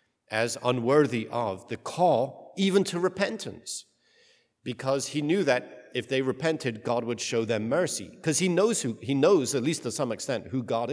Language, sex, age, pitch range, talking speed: English, male, 50-69, 110-145 Hz, 180 wpm